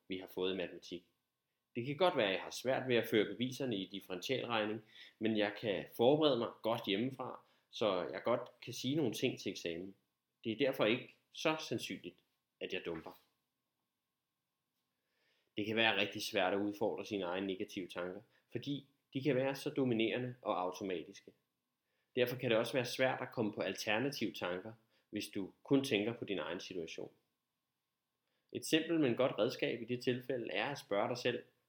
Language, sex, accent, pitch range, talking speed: Danish, male, native, 90-125 Hz, 180 wpm